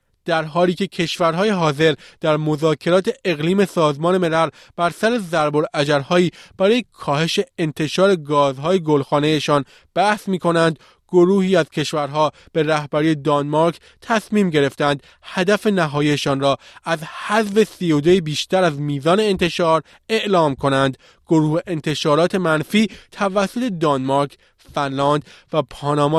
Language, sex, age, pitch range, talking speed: Persian, male, 20-39, 145-180 Hz, 110 wpm